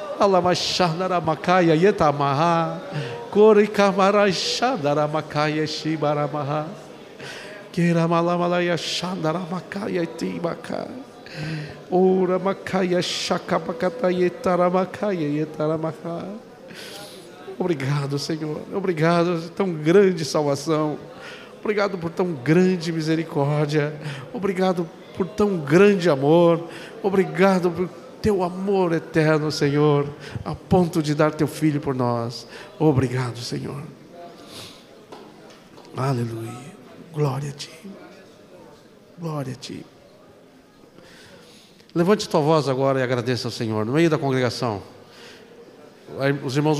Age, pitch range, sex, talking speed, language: 50-69, 145-185 Hz, male, 70 wpm, Portuguese